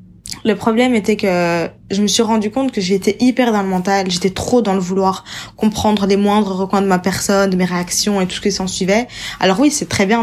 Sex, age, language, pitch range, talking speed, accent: female, 20-39, French, 195-235 Hz, 235 wpm, French